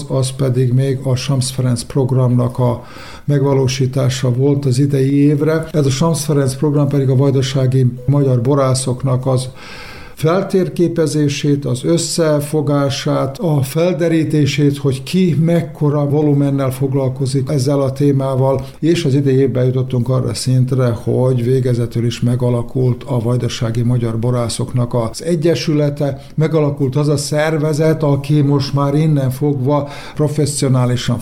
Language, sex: Hungarian, male